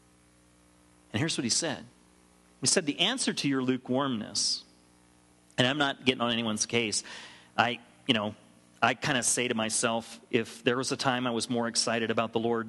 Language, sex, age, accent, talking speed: English, male, 40-59, American, 190 wpm